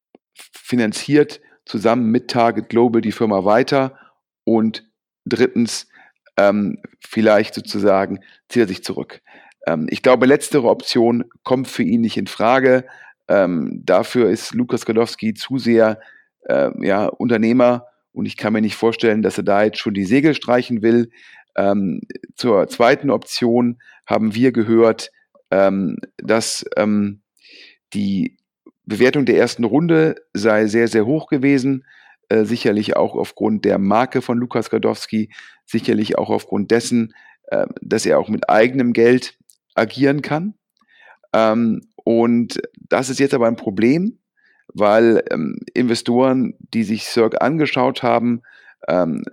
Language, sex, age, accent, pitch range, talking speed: German, male, 40-59, German, 110-130 Hz, 135 wpm